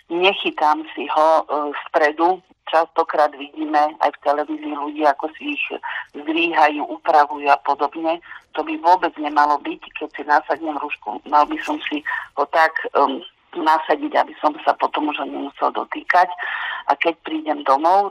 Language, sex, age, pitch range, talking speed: Slovak, female, 40-59, 145-170 Hz, 155 wpm